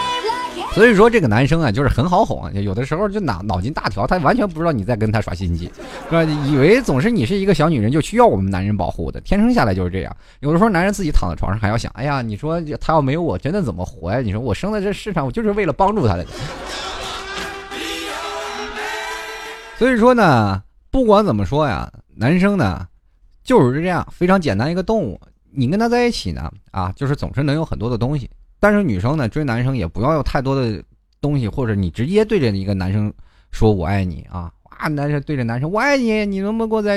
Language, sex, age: Chinese, male, 20-39